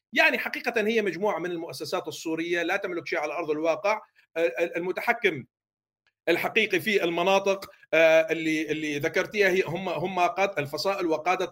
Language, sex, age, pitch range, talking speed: Arabic, male, 50-69, 170-235 Hz, 135 wpm